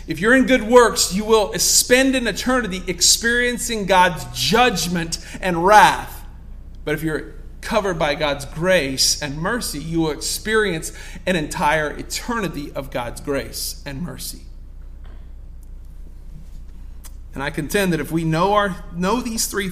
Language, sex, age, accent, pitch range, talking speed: English, male, 40-59, American, 135-220 Hz, 140 wpm